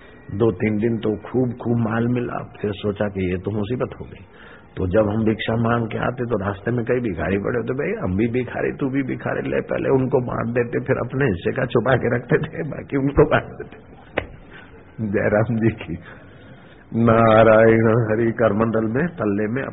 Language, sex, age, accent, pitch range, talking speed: Hindi, male, 60-79, native, 100-120 Hz, 160 wpm